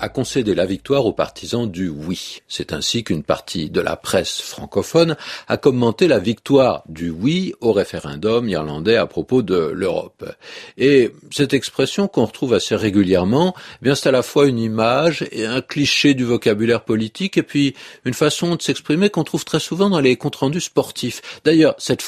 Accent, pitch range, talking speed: French, 115-165 Hz, 195 wpm